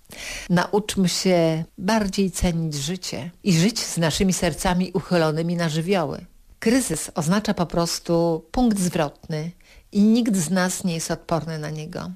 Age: 50-69